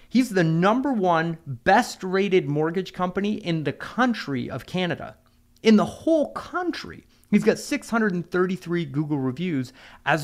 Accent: American